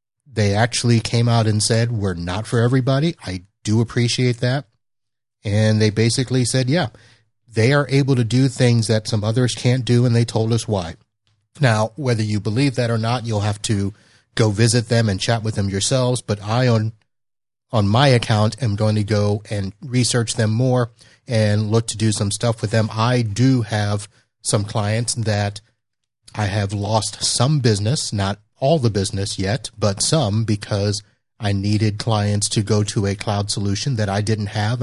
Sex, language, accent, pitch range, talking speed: male, English, American, 105-120 Hz, 185 wpm